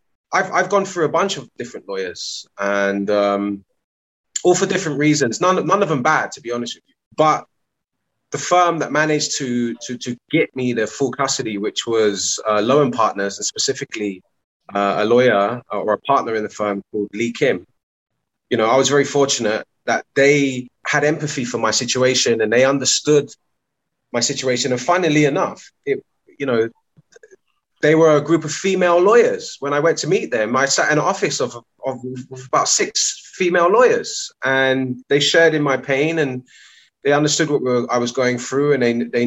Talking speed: 190 wpm